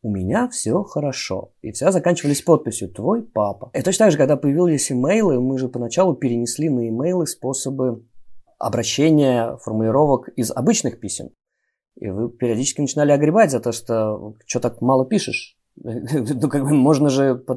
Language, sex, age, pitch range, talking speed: Russian, male, 20-39, 110-145 Hz, 155 wpm